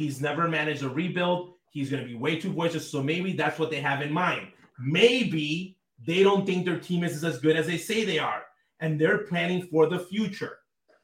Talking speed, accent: 215 wpm, American